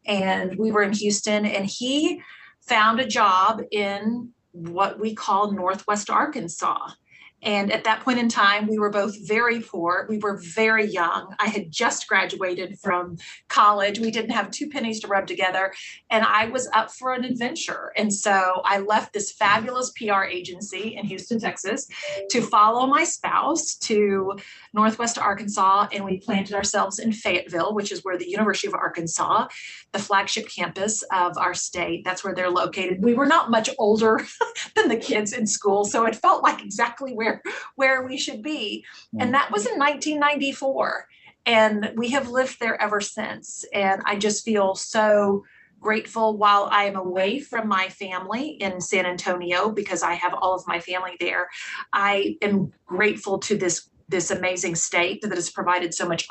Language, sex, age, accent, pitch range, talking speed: English, female, 30-49, American, 190-225 Hz, 175 wpm